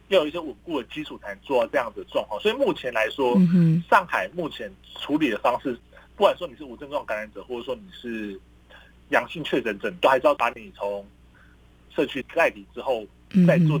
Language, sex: Chinese, male